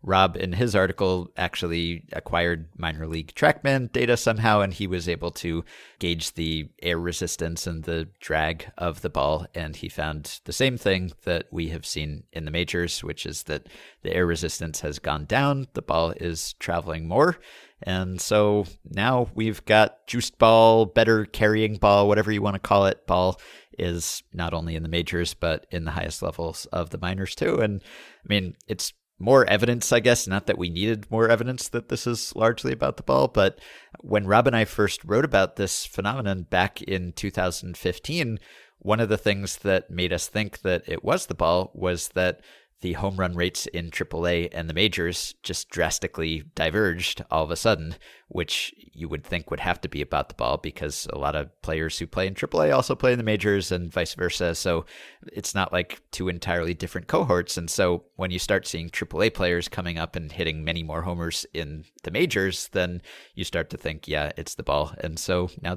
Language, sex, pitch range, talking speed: English, male, 85-105 Hz, 195 wpm